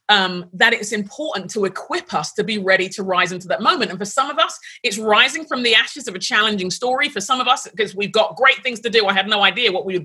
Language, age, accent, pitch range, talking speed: English, 30-49, British, 190-255 Hz, 280 wpm